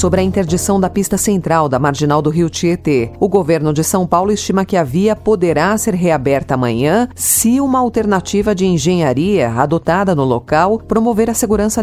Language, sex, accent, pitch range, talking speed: Portuguese, female, Brazilian, 145-210 Hz, 180 wpm